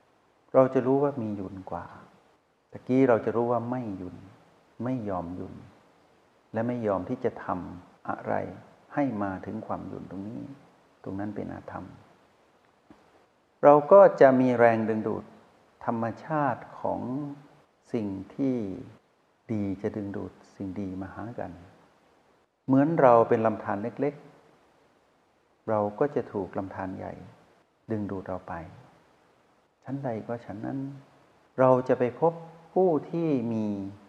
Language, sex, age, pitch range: Thai, male, 60-79, 100-135 Hz